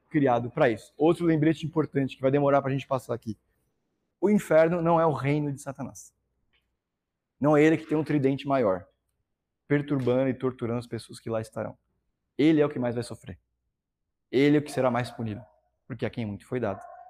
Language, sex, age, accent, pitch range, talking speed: Portuguese, male, 20-39, Brazilian, 115-145 Hz, 205 wpm